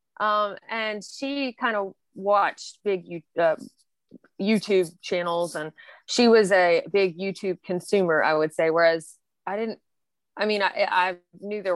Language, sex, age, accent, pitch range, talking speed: English, female, 20-39, American, 175-215 Hz, 155 wpm